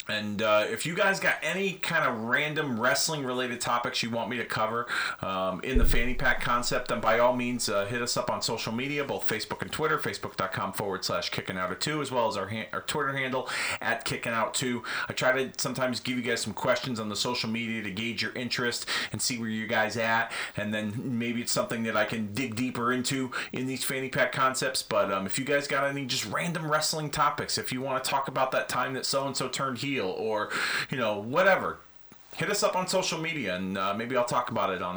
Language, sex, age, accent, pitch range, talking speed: English, male, 30-49, American, 110-135 Hz, 240 wpm